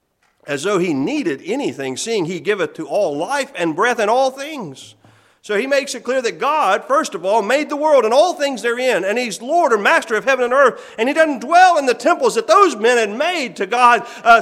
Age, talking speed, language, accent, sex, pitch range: 40-59, 235 wpm, English, American, male, 255-350 Hz